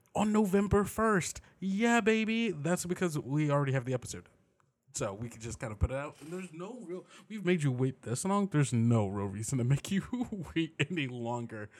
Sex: male